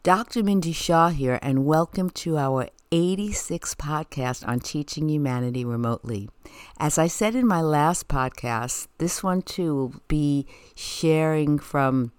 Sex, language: female, English